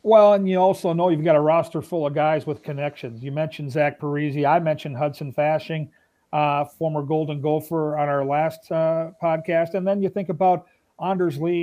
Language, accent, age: English, American, 40-59